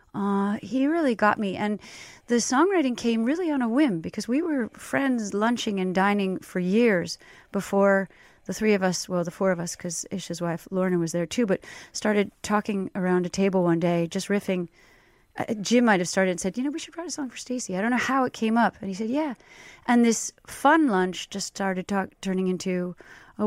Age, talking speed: 30-49, 220 wpm